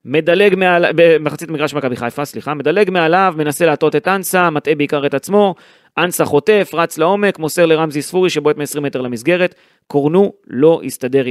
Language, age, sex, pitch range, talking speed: Hebrew, 30-49, male, 125-160 Hz, 160 wpm